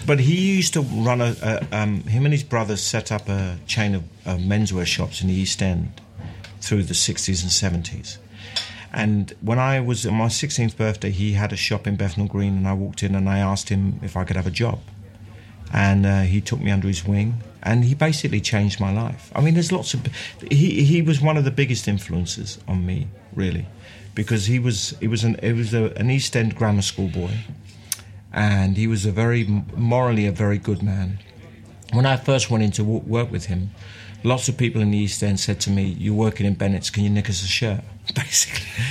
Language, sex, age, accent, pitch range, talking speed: English, male, 40-59, British, 100-120 Hz, 220 wpm